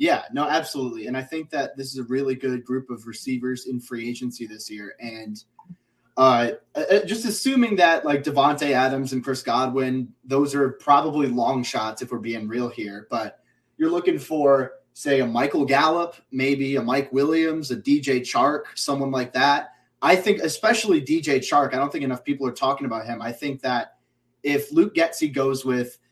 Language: English